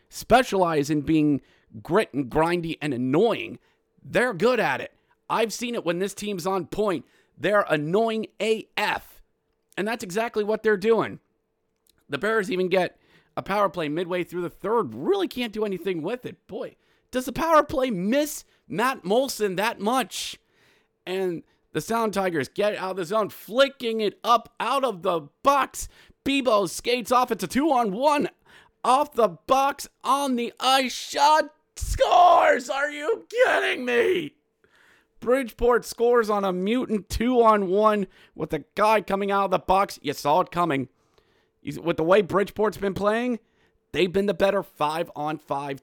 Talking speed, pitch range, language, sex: 155 wpm, 180-245 Hz, English, male